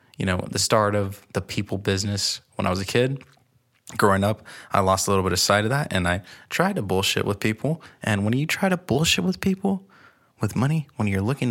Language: English